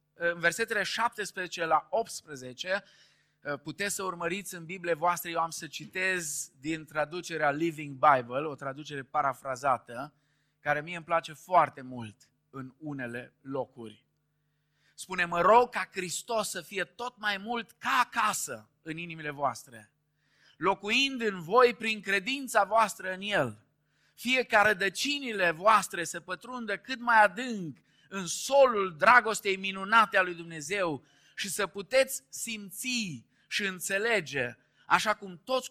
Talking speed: 130 wpm